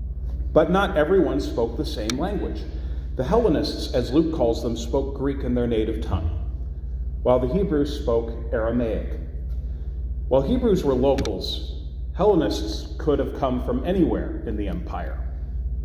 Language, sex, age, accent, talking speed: English, male, 40-59, American, 140 wpm